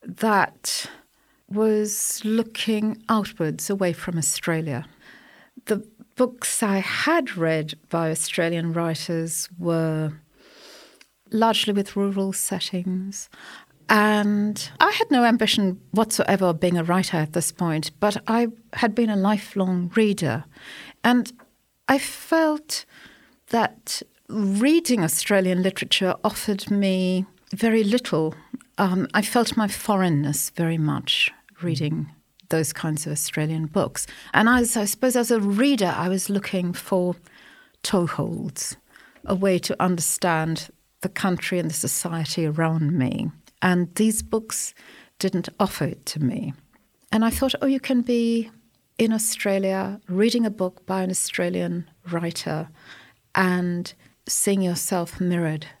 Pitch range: 170-220 Hz